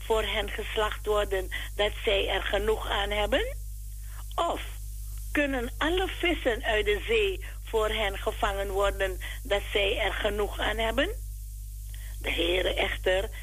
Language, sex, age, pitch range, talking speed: Dutch, female, 60-79, 165-245 Hz, 135 wpm